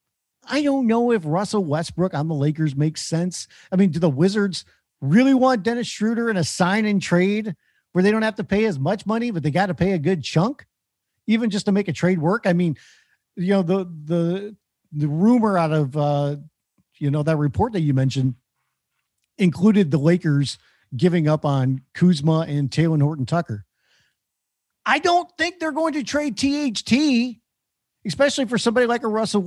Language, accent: English, American